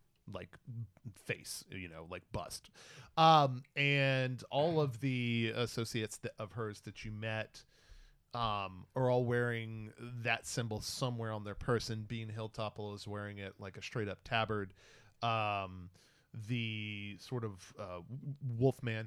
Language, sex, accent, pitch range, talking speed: English, male, American, 95-125 Hz, 135 wpm